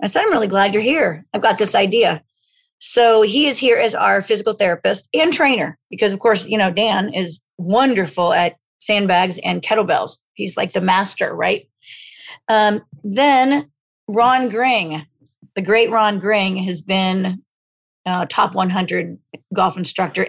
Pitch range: 185-225 Hz